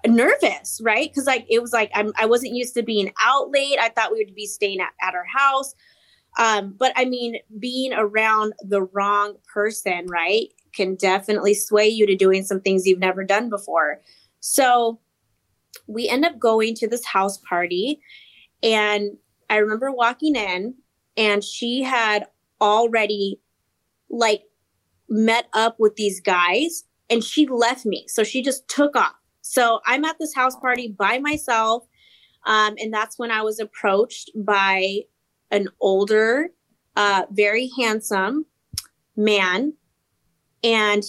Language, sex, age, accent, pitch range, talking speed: English, female, 20-39, American, 205-245 Hz, 150 wpm